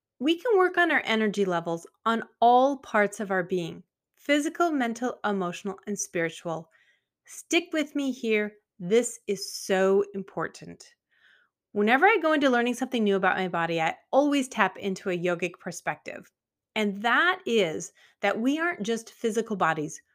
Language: English